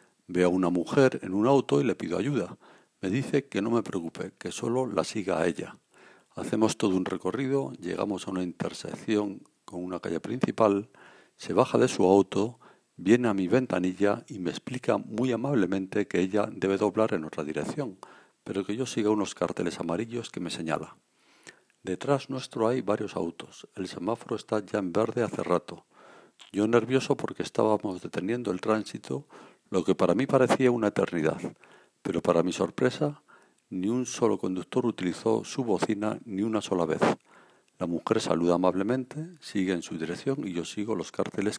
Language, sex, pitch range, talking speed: Spanish, male, 90-115 Hz, 175 wpm